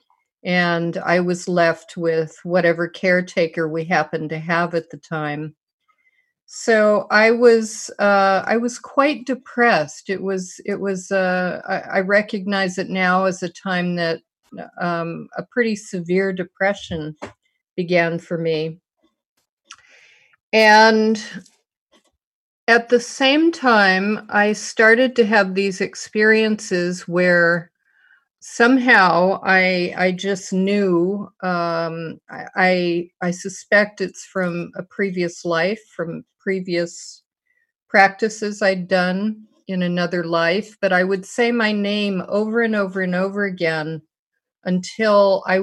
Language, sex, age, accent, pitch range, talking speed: English, female, 50-69, American, 170-210 Hz, 120 wpm